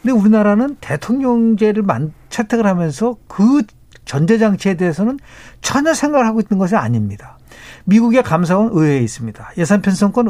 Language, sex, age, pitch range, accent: Korean, male, 50-69, 155-235 Hz, native